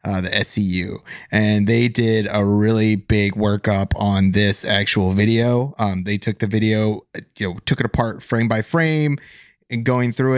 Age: 30-49